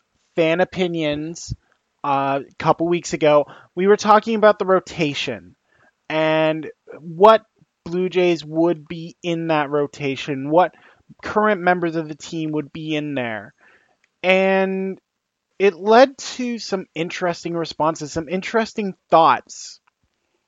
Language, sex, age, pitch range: English, male, 20-39, 150-190 Hz